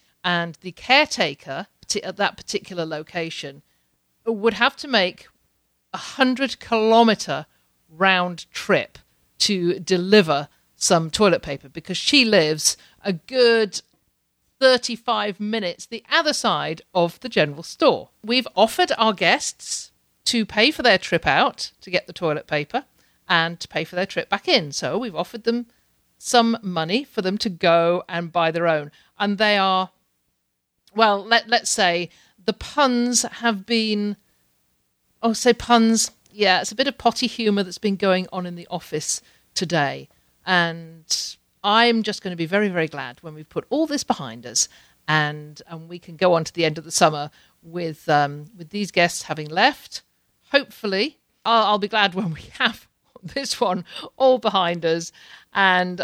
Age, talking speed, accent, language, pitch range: 50-69, 160 wpm, British, English, 165-225 Hz